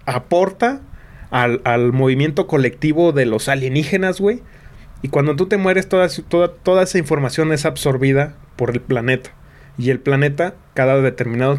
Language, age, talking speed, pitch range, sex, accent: Spanish, 30-49, 150 wpm, 135-180 Hz, male, Mexican